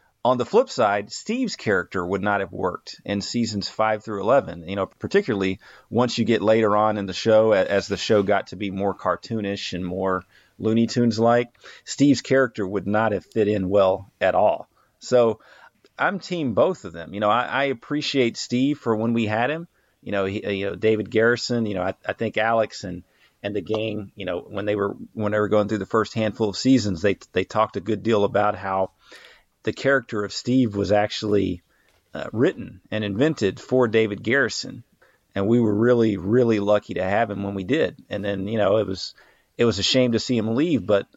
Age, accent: 40-59, American